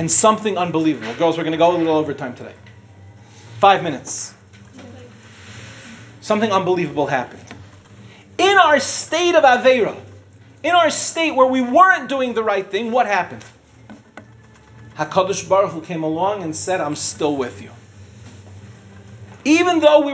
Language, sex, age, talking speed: English, male, 40-59, 145 wpm